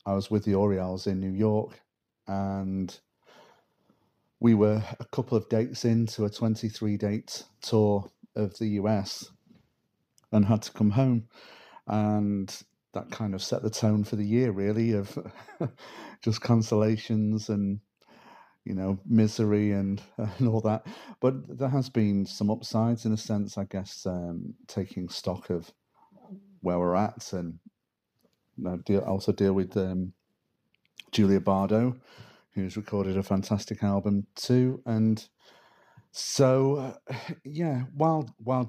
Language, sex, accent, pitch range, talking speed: English, male, British, 100-115 Hz, 140 wpm